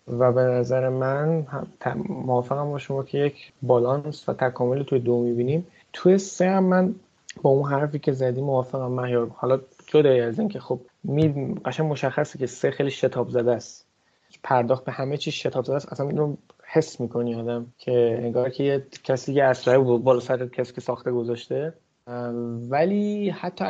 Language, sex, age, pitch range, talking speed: Persian, male, 30-49, 125-150 Hz, 170 wpm